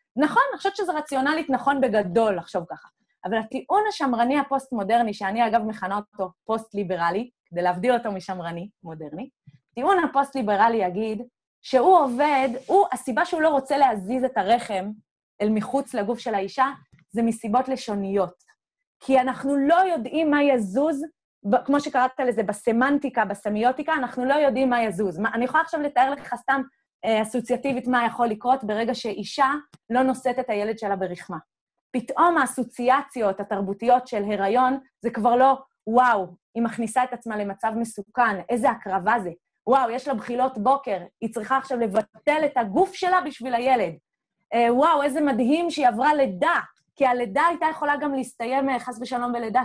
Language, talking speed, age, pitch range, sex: Hebrew, 150 wpm, 20-39, 215-275 Hz, female